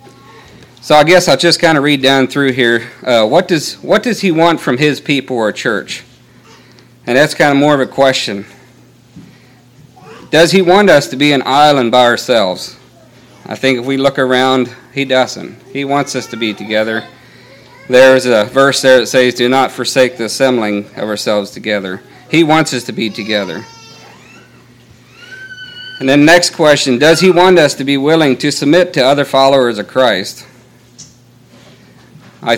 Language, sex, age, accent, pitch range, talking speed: English, male, 50-69, American, 120-150 Hz, 175 wpm